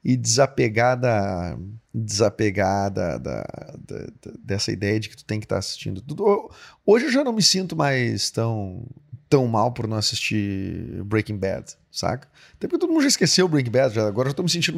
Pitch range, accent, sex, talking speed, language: 115-175 Hz, Brazilian, male, 195 wpm, Portuguese